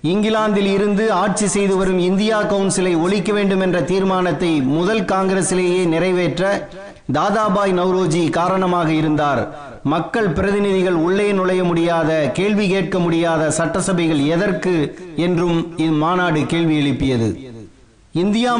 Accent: native